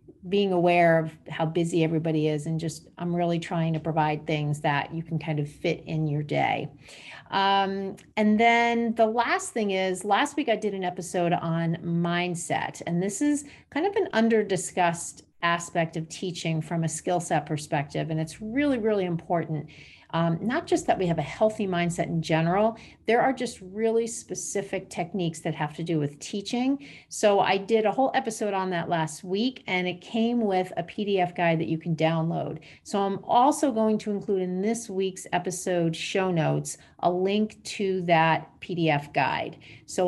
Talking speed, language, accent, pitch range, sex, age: 185 wpm, English, American, 165-210 Hz, female, 40-59